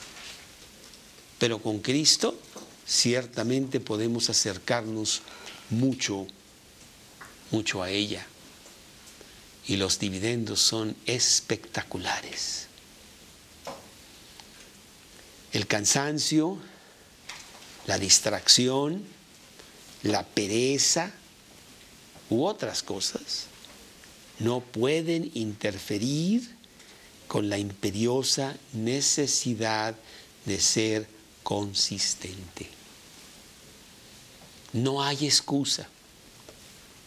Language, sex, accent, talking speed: Spanish, male, Mexican, 60 wpm